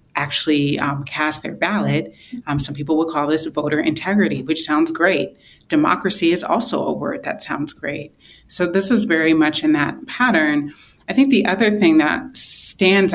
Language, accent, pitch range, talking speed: English, American, 160-245 Hz, 180 wpm